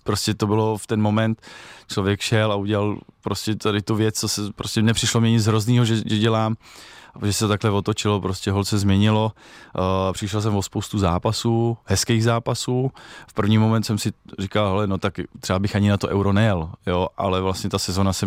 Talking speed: 205 wpm